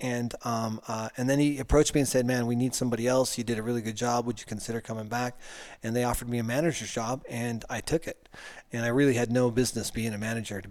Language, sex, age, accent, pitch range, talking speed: English, male, 30-49, American, 110-125 Hz, 265 wpm